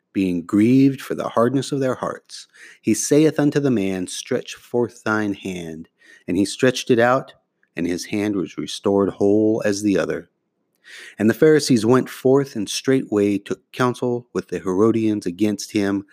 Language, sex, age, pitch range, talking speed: English, male, 30-49, 95-130 Hz, 165 wpm